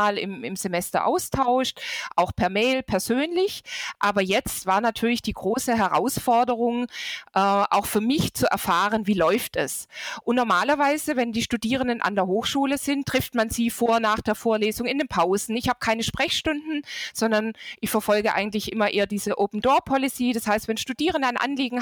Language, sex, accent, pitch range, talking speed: German, female, German, 210-265 Hz, 170 wpm